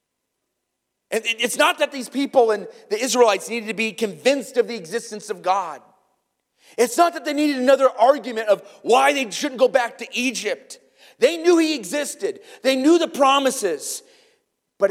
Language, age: English, 30-49